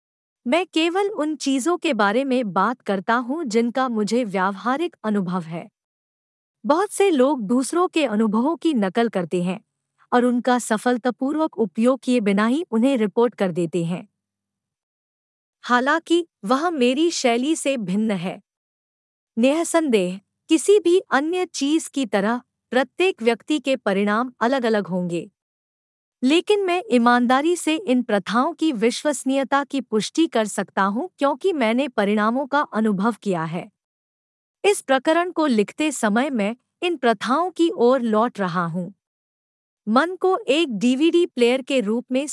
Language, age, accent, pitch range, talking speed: Hindi, 50-69, native, 215-310 Hz, 140 wpm